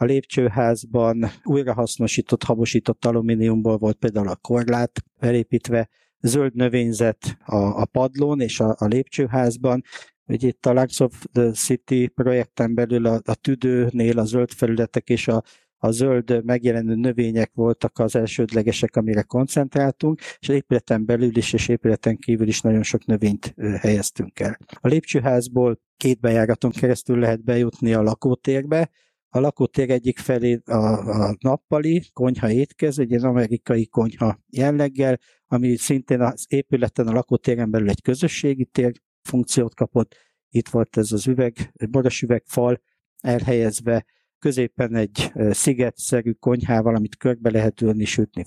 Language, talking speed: Hungarian, 135 wpm